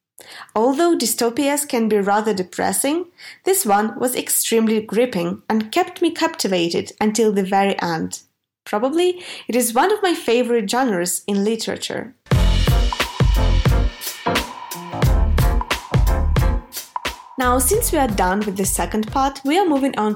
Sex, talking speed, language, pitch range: female, 125 wpm, English, 210-290 Hz